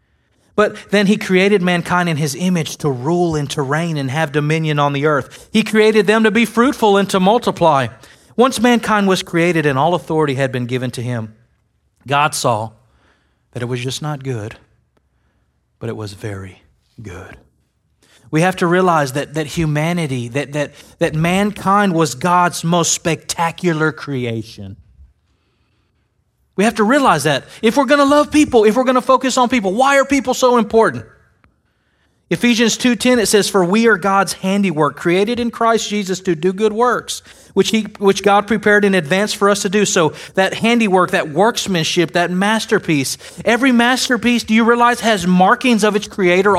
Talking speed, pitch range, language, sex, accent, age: 175 wpm, 135-210 Hz, English, male, American, 30-49